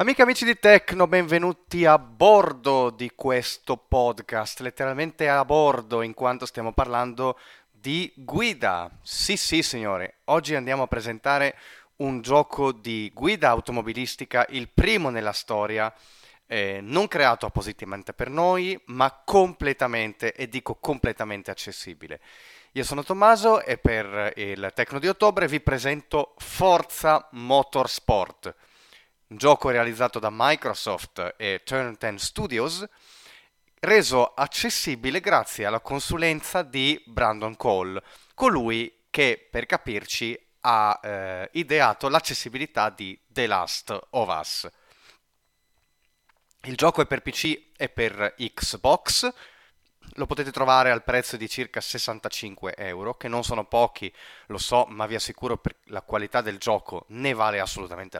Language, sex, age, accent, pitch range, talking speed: Italian, male, 30-49, native, 110-150 Hz, 130 wpm